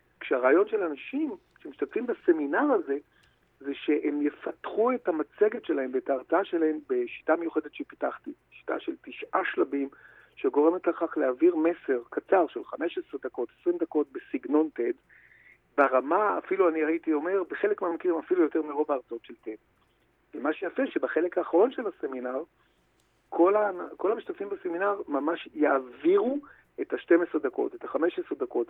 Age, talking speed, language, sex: 50-69, 140 wpm, Hebrew, male